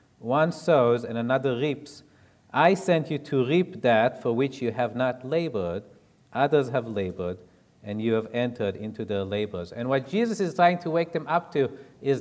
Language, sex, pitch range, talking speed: English, male, 115-150 Hz, 185 wpm